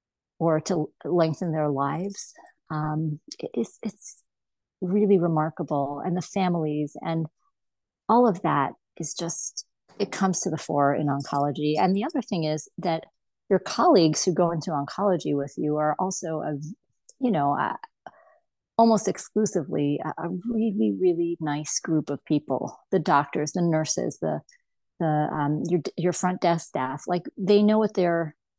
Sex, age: female, 40-59